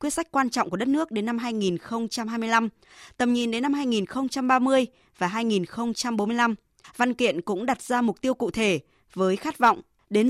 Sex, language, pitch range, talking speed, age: female, Vietnamese, 195-255 Hz, 175 wpm, 20-39